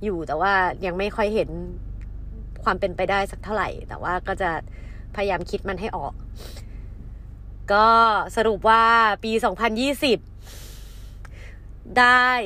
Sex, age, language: female, 30-49, Thai